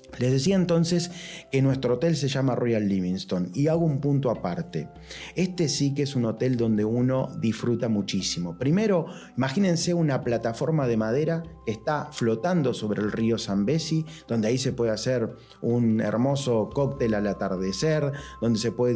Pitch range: 115-160 Hz